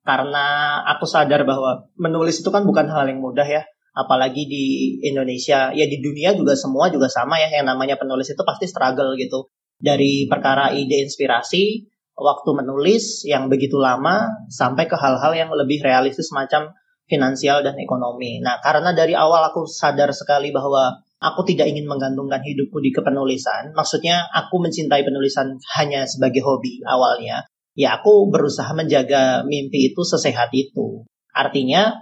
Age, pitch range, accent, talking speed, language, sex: 30-49, 135-155 Hz, native, 150 wpm, Indonesian, male